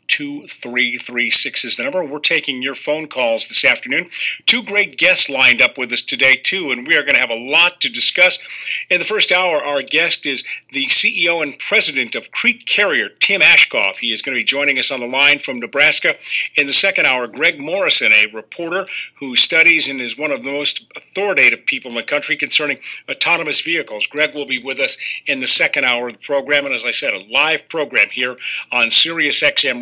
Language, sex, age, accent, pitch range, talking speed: English, male, 50-69, American, 135-165 Hz, 215 wpm